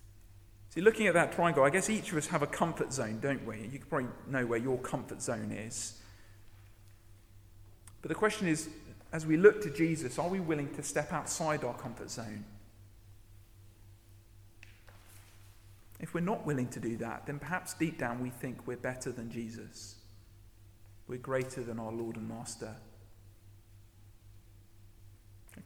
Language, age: English, 40-59